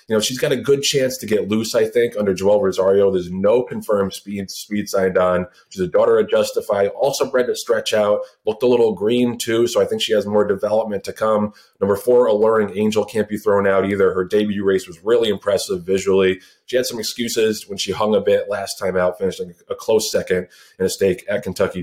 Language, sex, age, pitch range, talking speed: English, male, 20-39, 100-165 Hz, 230 wpm